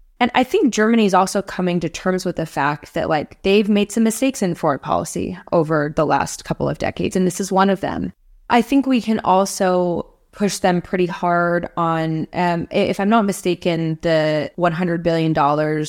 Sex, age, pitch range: female, 20-39, 155-180 Hz